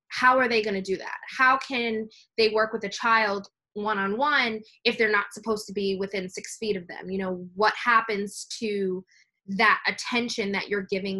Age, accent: 20-39, American